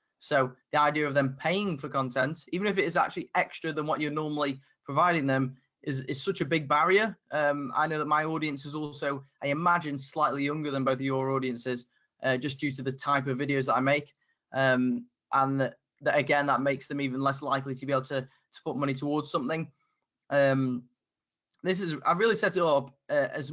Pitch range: 135-155 Hz